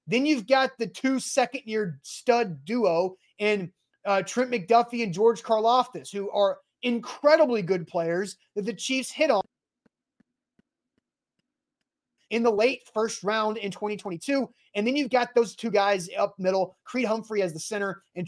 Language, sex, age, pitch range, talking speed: English, male, 30-49, 185-245 Hz, 155 wpm